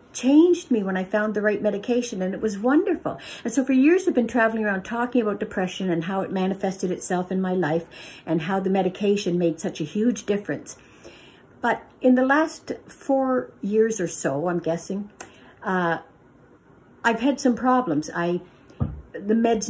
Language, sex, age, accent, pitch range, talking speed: English, female, 60-79, American, 170-220 Hz, 175 wpm